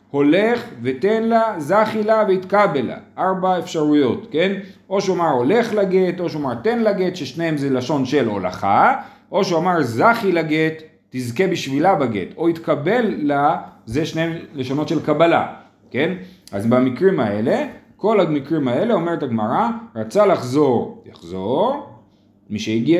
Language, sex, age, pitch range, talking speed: Hebrew, male, 40-59, 135-190 Hz, 135 wpm